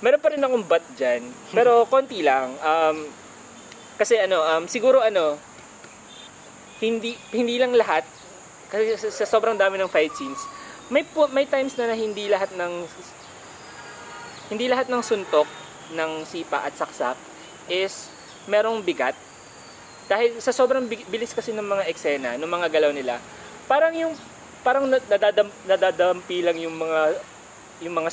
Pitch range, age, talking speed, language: 155-225 Hz, 20-39, 145 wpm, Filipino